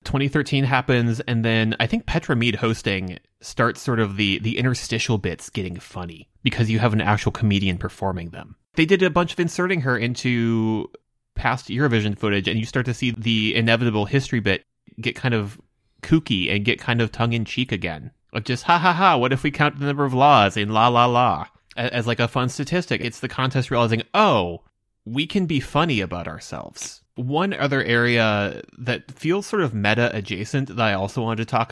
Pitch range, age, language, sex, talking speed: 100-130 Hz, 30-49, English, male, 195 wpm